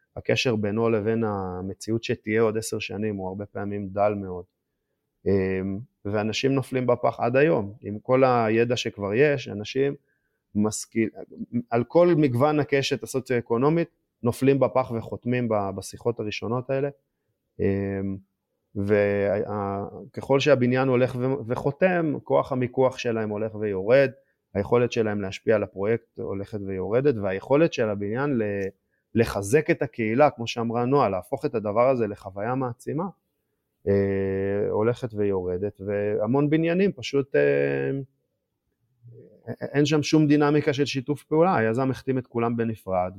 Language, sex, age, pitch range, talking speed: Hebrew, male, 20-39, 100-130 Hz, 120 wpm